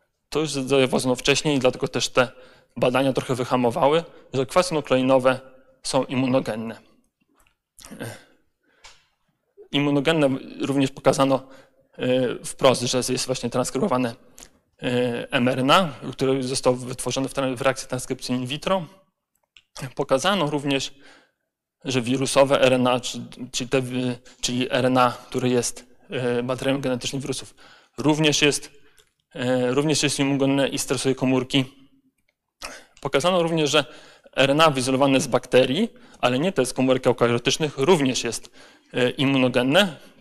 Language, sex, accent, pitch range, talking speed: Polish, male, native, 125-140 Hz, 105 wpm